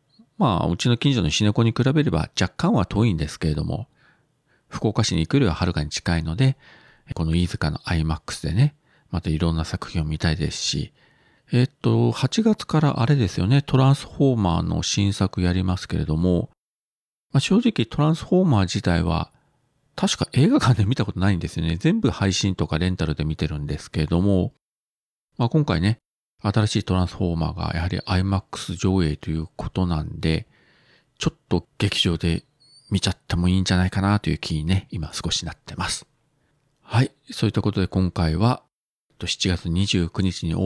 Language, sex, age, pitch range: Japanese, male, 40-59, 85-115 Hz